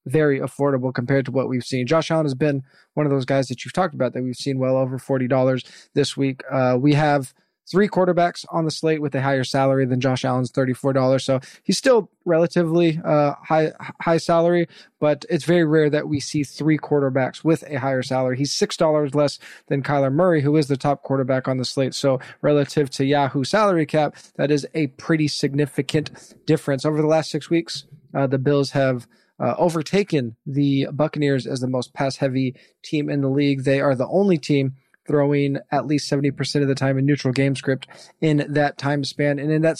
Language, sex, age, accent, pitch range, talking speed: English, male, 20-39, American, 135-160 Hz, 200 wpm